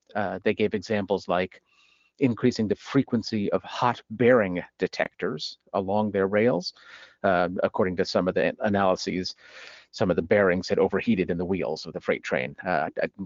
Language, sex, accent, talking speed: English, male, American, 170 wpm